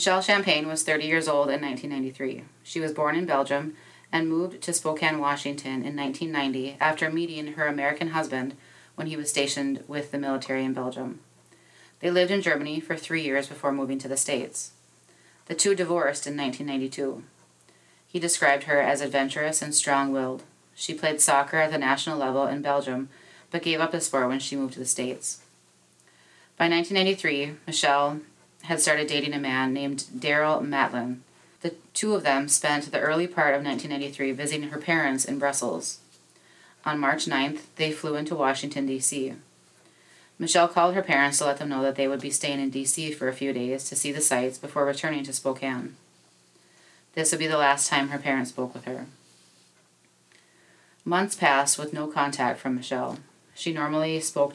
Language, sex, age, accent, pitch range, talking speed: English, female, 30-49, American, 135-155 Hz, 175 wpm